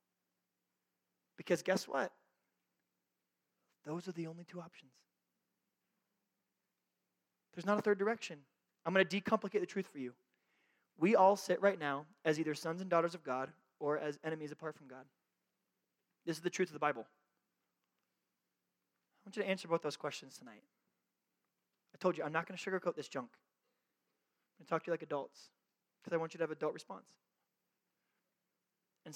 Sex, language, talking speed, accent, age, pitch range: male, English, 175 wpm, American, 20-39, 155-195 Hz